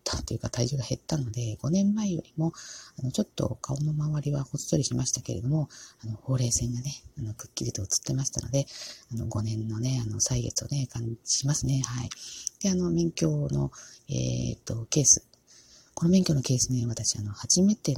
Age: 40-59